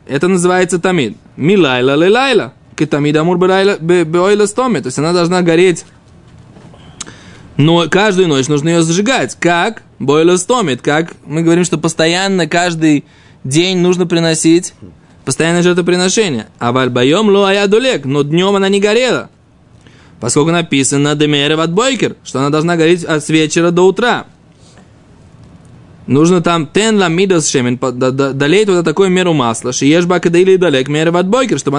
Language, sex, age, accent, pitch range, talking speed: Russian, male, 20-39, native, 155-200 Hz, 130 wpm